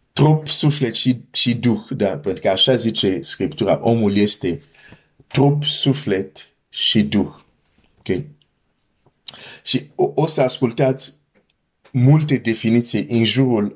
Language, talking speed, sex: Romanian, 110 wpm, male